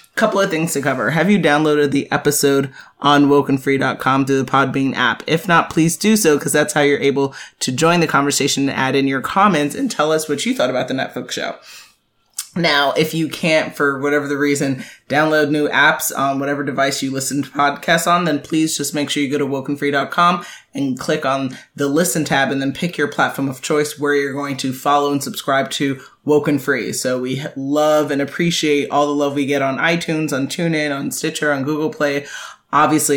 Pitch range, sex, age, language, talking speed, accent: 140-165 Hz, male, 20-39, English, 210 wpm, American